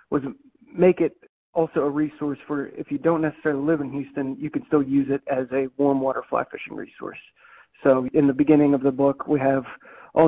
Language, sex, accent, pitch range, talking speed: English, male, American, 135-150 Hz, 210 wpm